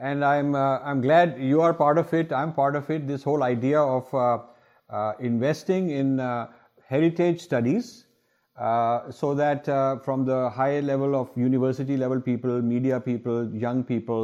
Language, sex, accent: English, male, Indian